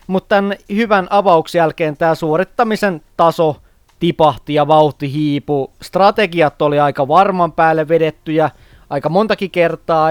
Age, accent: 30-49, native